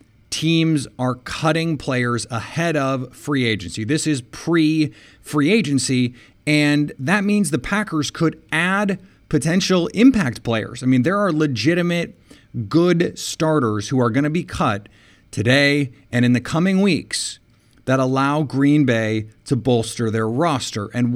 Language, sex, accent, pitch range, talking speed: English, male, American, 115-150 Hz, 140 wpm